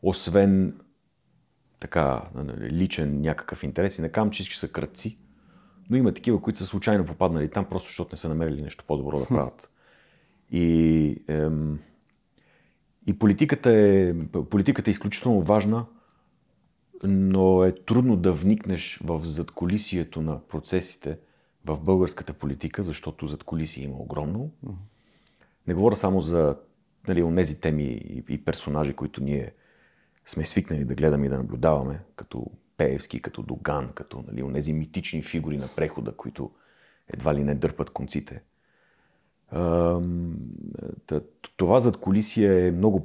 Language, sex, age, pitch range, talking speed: Bulgarian, male, 40-59, 75-100 Hz, 130 wpm